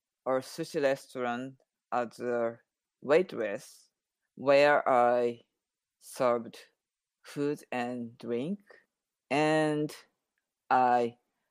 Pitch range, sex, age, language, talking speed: 120-145 Hz, female, 50-69, English, 75 wpm